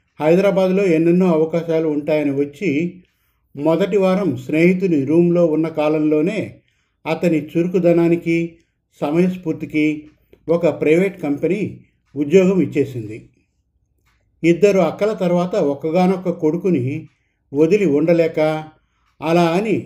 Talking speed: 85 wpm